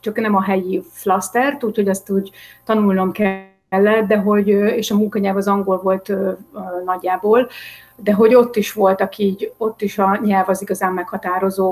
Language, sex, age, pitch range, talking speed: Hungarian, female, 30-49, 190-215 Hz, 180 wpm